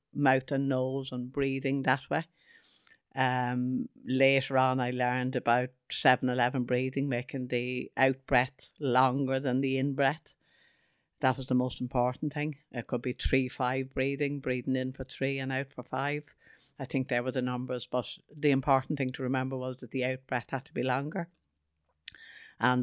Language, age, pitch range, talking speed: English, 60-79, 125-135 Hz, 175 wpm